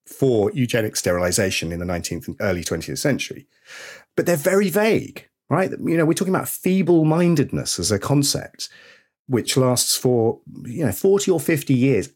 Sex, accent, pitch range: male, British, 100-160 Hz